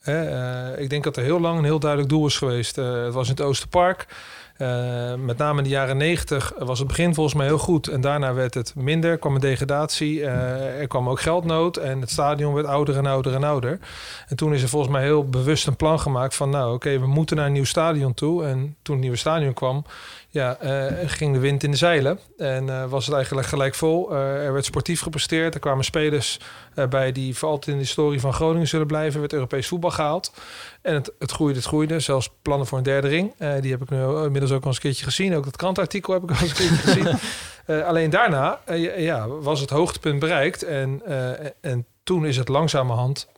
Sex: male